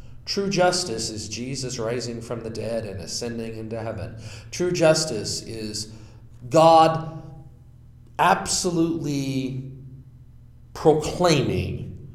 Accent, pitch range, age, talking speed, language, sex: American, 105-130 Hz, 40-59, 90 wpm, English, male